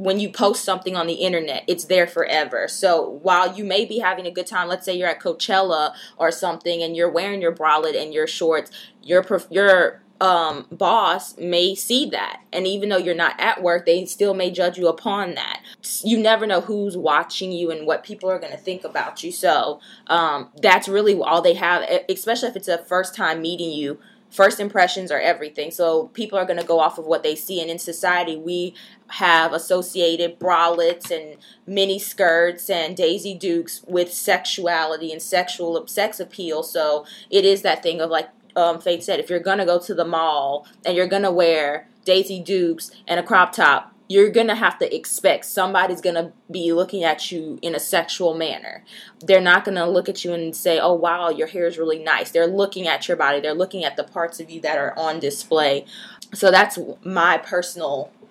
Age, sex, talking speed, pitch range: 20-39, female, 205 wpm, 170-195 Hz